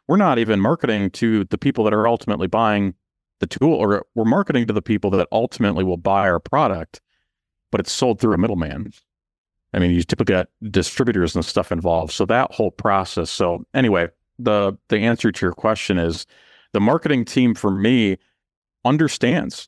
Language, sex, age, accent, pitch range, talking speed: English, male, 40-59, American, 90-115 Hz, 180 wpm